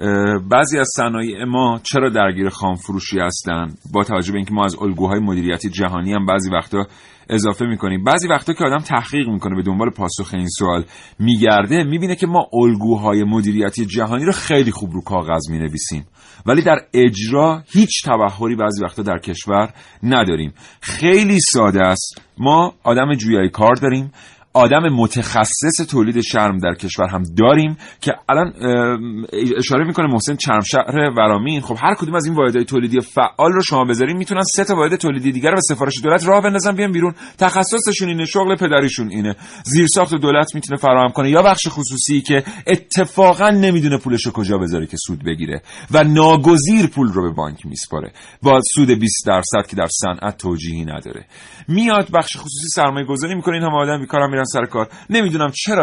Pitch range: 100-150 Hz